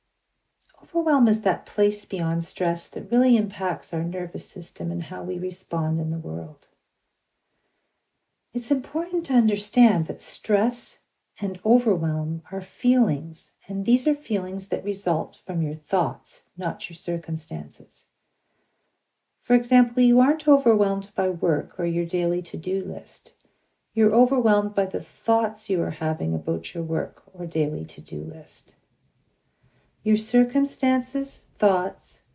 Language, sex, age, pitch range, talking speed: English, female, 50-69, 165-220 Hz, 130 wpm